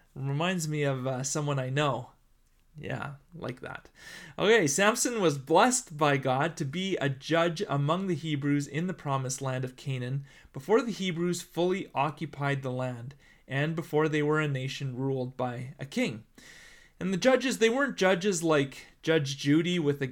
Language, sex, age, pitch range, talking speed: English, male, 30-49, 140-190 Hz, 170 wpm